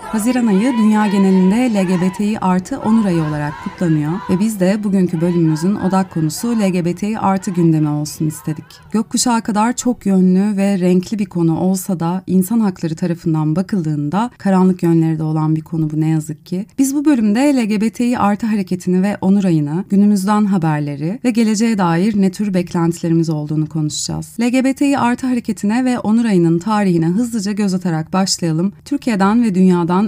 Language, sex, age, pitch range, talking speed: Turkish, female, 30-49, 165-215 Hz, 160 wpm